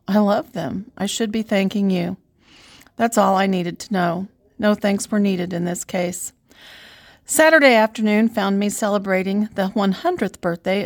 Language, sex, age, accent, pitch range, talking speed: English, female, 40-59, American, 190-220 Hz, 160 wpm